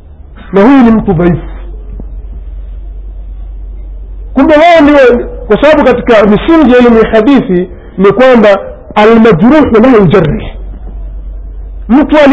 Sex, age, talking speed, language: male, 50-69, 90 wpm, Swahili